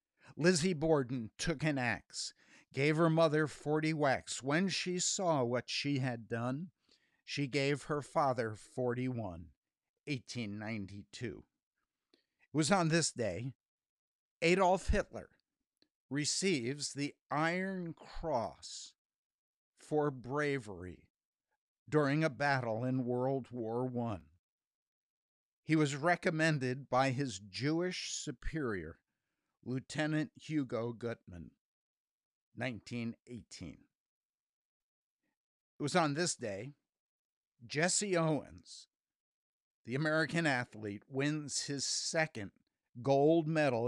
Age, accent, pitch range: 60-79, American, 120-155 Hz